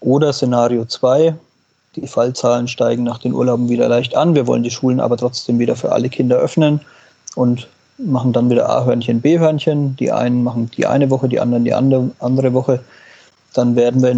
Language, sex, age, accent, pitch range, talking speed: German, male, 30-49, German, 120-140 Hz, 185 wpm